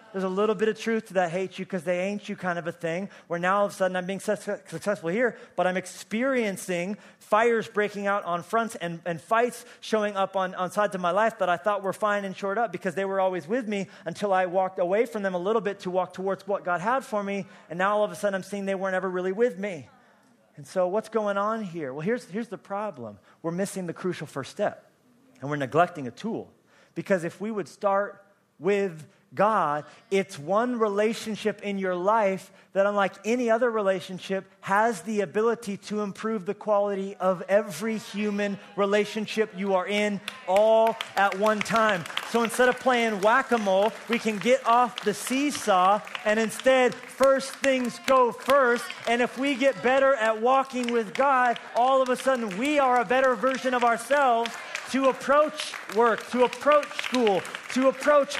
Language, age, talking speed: English, 30-49, 200 wpm